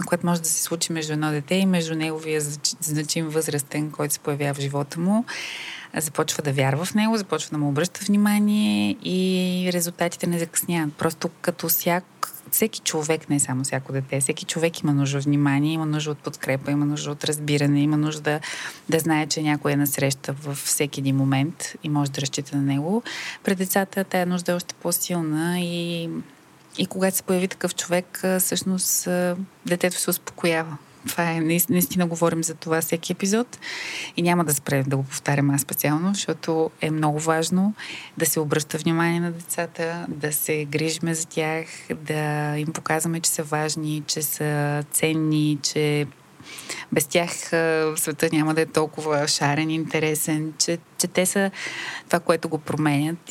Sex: female